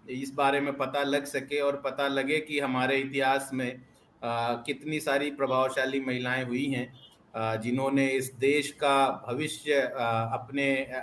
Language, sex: Hindi, male